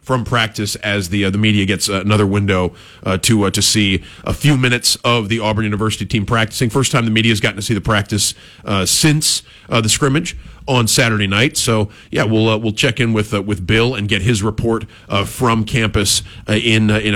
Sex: male